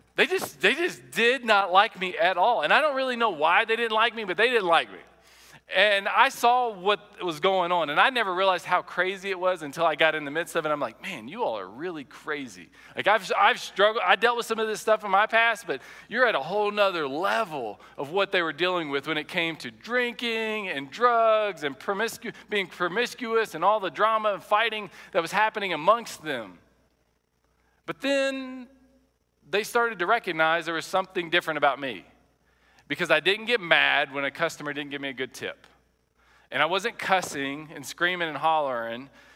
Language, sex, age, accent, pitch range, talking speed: English, male, 40-59, American, 150-215 Hz, 210 wpm